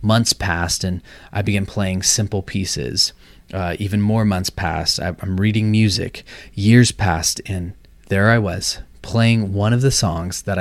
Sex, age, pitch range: male, 30-49, 90-110 Hz